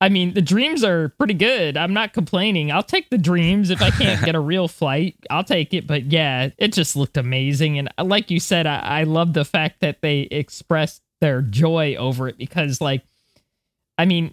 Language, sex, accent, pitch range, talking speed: English, male, American, 145-185 Hz, 210 wpm